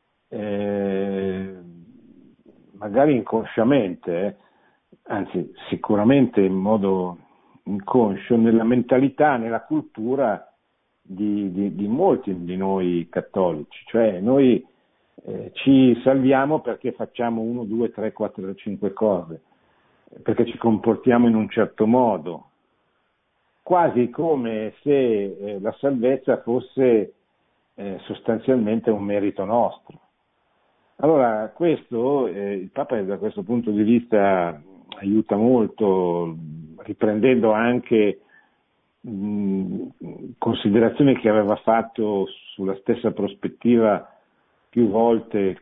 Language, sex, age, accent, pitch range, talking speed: Italian, male, 50-69, native, 100-120 Hz, 100 wpm